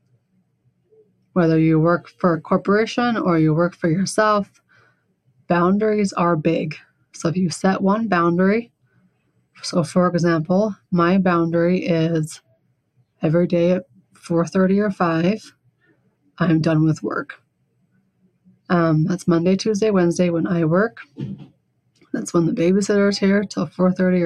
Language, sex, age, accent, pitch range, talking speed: English, female, 30-49, American, 170-195 Hz, 130 wpm